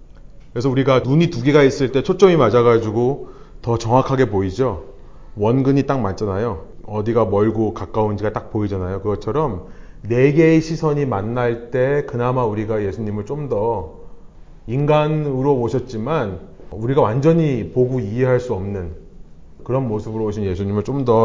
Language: Korean